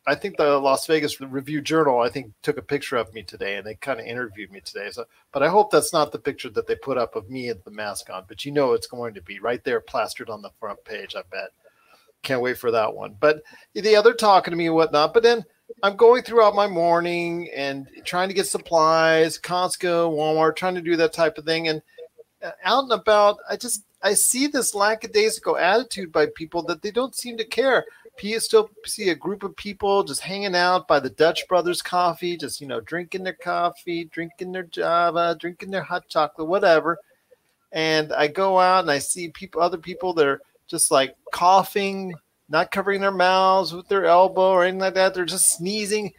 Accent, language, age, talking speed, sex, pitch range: American, English, 40-59, 215 wpm, male, 160-205 Hz